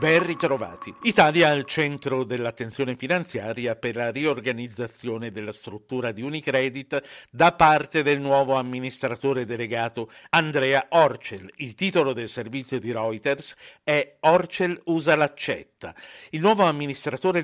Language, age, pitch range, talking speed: Italian, 60-79, 120-160 Hz, 120 wpm